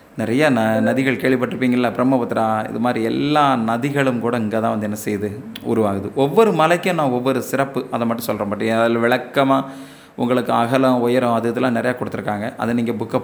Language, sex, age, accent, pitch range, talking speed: Tamil, male, 30-49, native, 110-135 Hz, 165 wpm